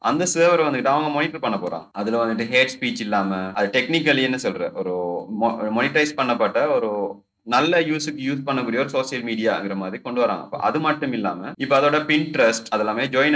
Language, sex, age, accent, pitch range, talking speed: Tamil, male, 30-49, native, 110-150 Hz, 125 wpm